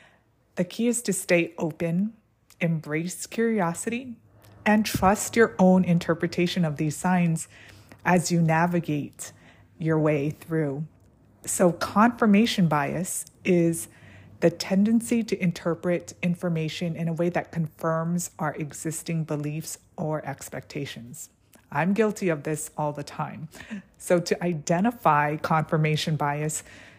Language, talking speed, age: English, 120 wpm, 30-49